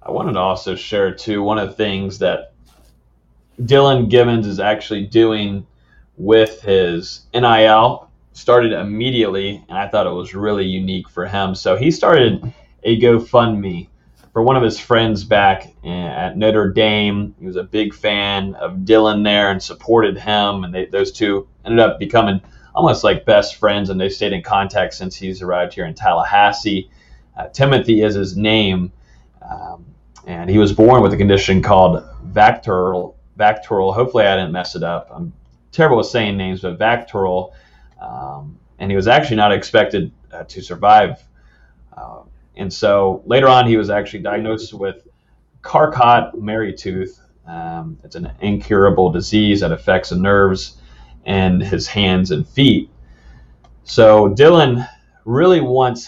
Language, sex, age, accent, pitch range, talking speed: English, male, 30-49, American, 90-110 Hz, 155 wpm